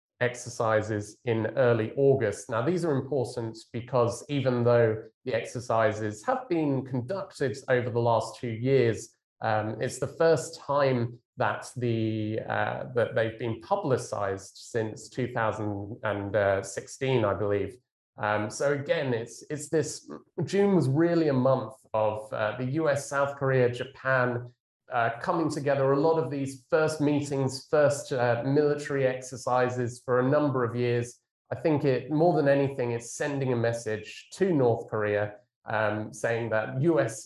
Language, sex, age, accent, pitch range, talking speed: English, male, 30-49, British, 110-135 Hz, 145 wpm